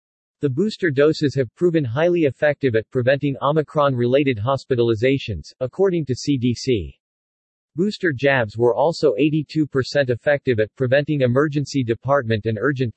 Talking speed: 125 wpm